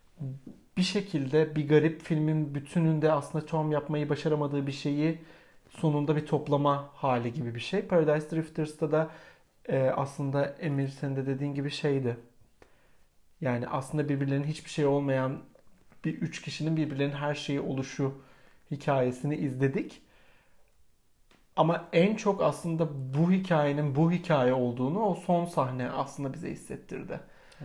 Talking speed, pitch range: 130 wpm, 140-175 Hz